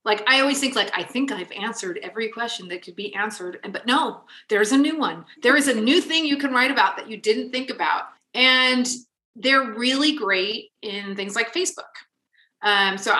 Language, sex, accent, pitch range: English, female, American, 190-260 Hz